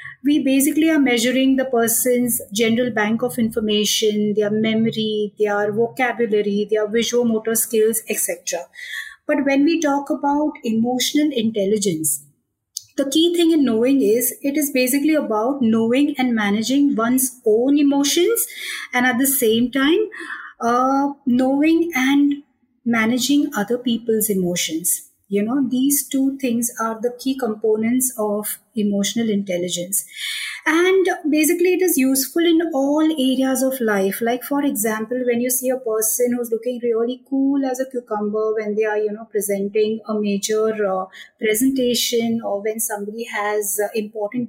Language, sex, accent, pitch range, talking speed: English, female, Indian, 215-270 Hz, 145 wpm